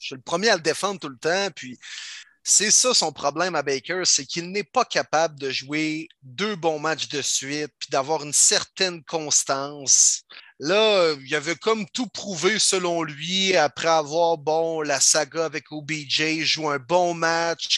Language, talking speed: French, 180 wpm